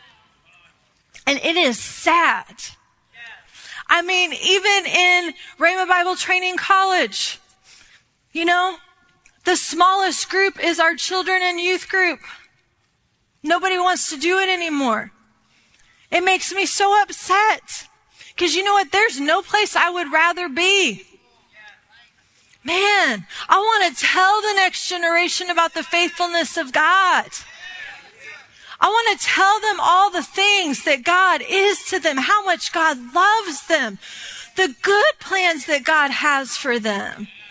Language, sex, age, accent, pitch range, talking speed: English, female, 30-49, American, 305-375 Hz, 135 wpm